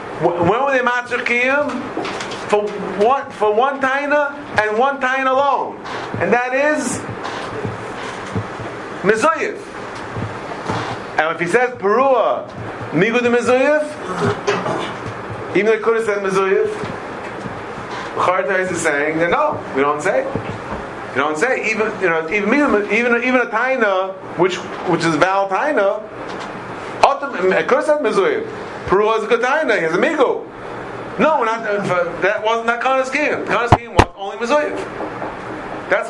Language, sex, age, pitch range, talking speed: English, male, 40-59, 175-265 Hz, 125 wpm